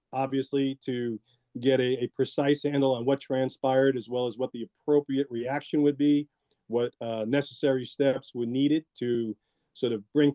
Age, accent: 40-59, American